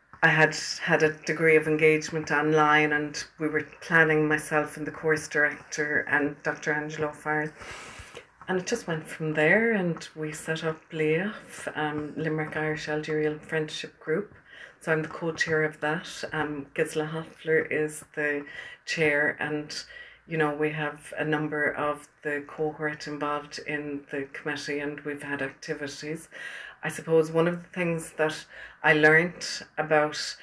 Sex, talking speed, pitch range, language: female, 150 wpm, 150-160 Hz, English